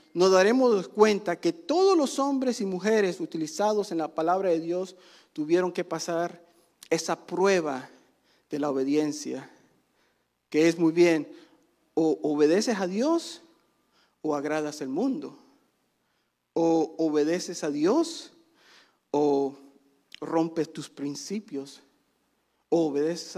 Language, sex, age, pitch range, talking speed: Spanish, male, 40-59, 155-235 Hz, 115 wpm